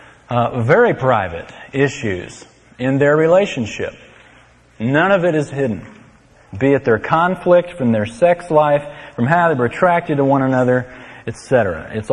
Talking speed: 150 wpm